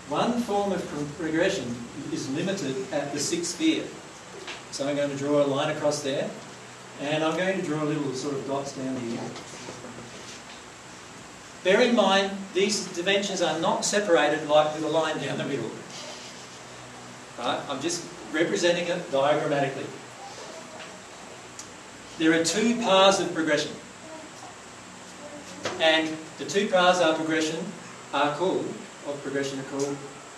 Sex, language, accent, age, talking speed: male, English, Australian, 40-59, 140 wpm